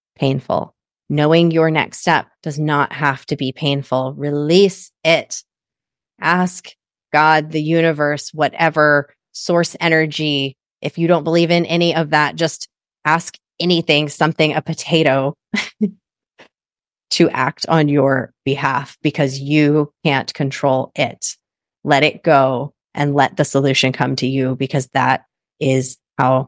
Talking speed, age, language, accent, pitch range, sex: 130 wpm, 30-49, English, American, 135-170 Hz, female